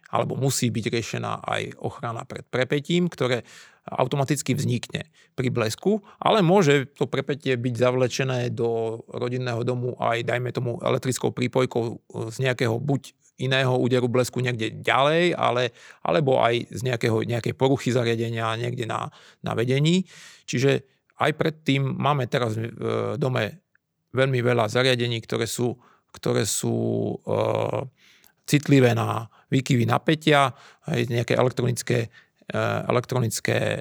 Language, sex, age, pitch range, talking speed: Slovak, male, 30-49, 120-140 Hz, 115 wpm